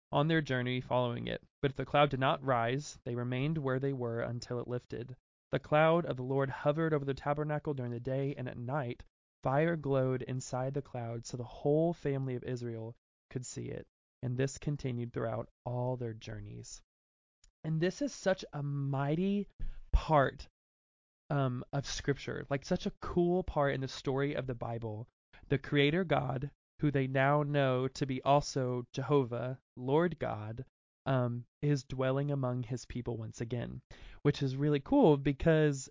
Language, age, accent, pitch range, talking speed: English, 20-39, American, 125-145 Hz, 170 wpm